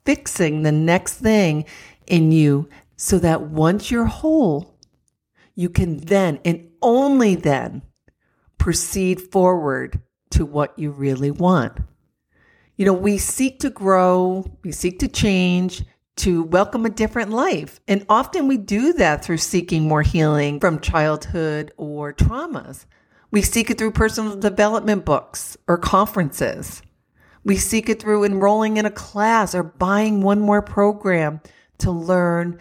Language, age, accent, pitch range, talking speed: English, 50-69, American, 160-215 Hz, 140 wpm